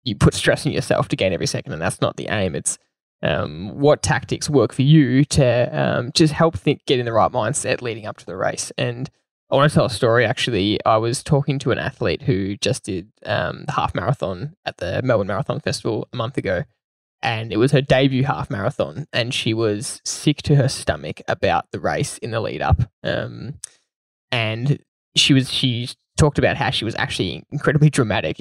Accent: Australian